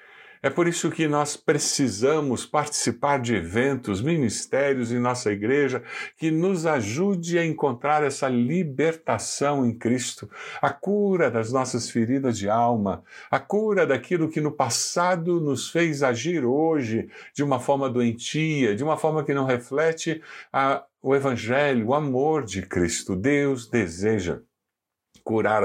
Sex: male